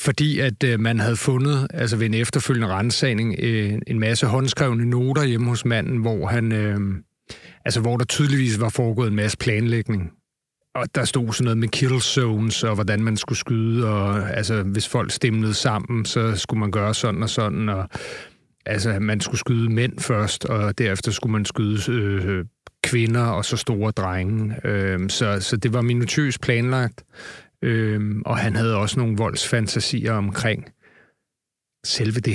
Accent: native